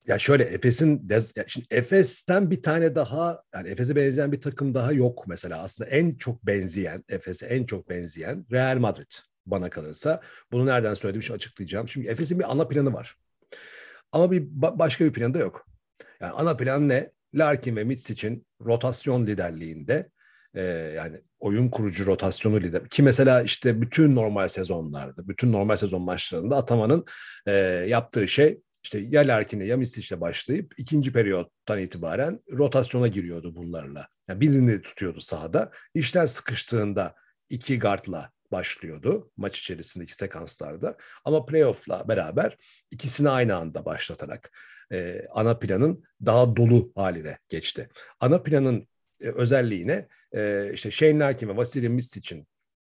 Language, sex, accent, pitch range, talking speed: Turkish, male, native, 100-140 Hz, 145 wpm